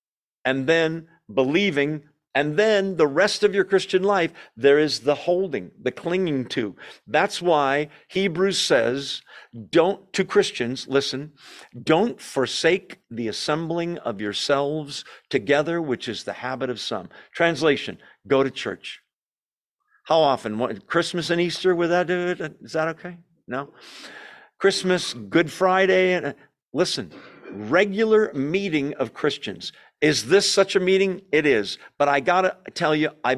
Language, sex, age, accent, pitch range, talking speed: English, male, 50-69, American, 130-180 Hz, 145 wpm